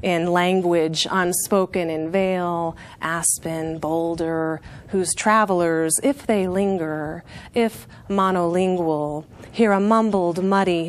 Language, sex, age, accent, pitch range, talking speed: English, female, 30-49, American, 180-230 Hz, 100 wpm